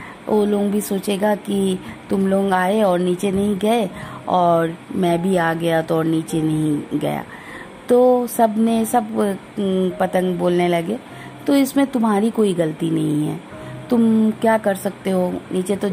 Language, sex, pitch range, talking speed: Hindi, female, 175-220 Hz, 160 wpm